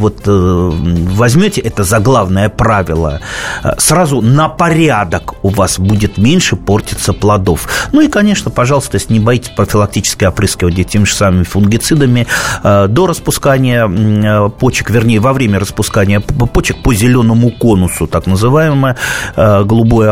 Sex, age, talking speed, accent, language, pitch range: male, 30-49, 120 wpm, native, Russian, 100-130 Hz